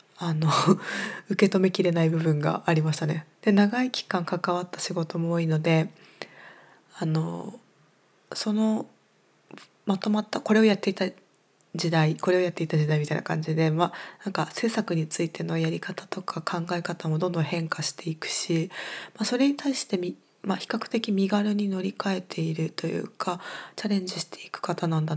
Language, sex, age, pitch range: Japanese, female, 20-39, 165-205 Hz